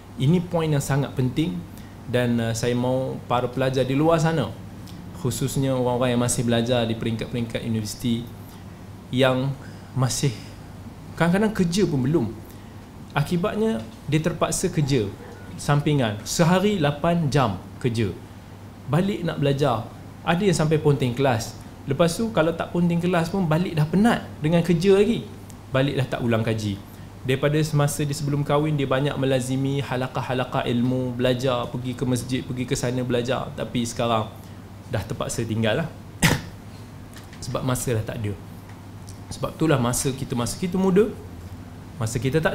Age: 20-39